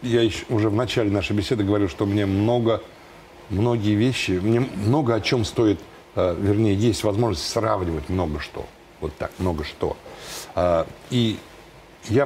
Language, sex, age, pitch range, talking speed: Russian, male, 60-79, 105-130 Hz, 140 wpm